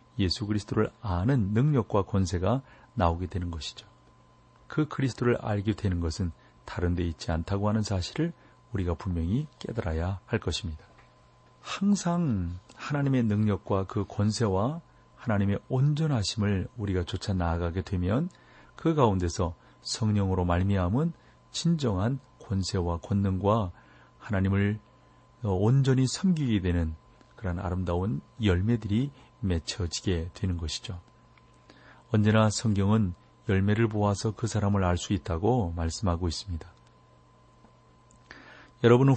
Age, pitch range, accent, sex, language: 40-59, 90-115 Hz, native, male, Korean